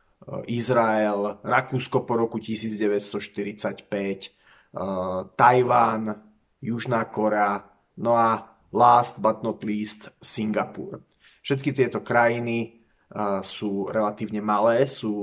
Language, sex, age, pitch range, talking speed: Slovak, male, 30-49, 105-125 Hz, 85 wpm